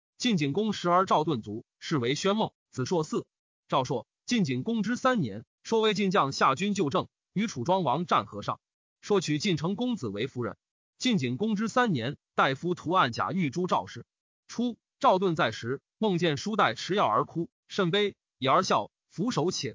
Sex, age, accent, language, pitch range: male, 30-49, native, Chinese, 145-215 Hz